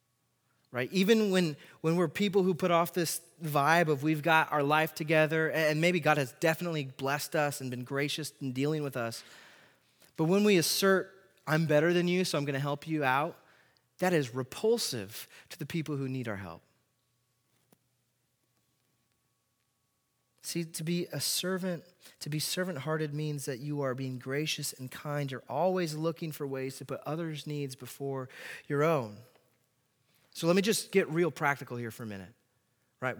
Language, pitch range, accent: English, 130-170 Hz, American